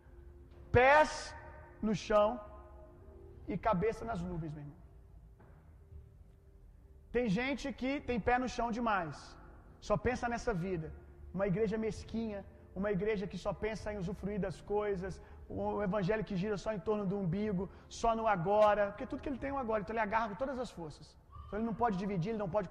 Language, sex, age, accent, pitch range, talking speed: Gujarati, male, 30-49, Brazilian, 185-235 Hz, 175 wpm